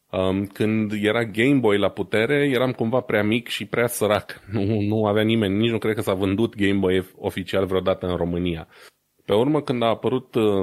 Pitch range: 95-110 Hz